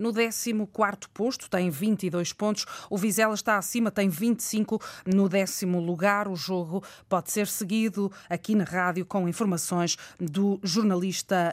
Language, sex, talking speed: Portuguese, female, 140 wpm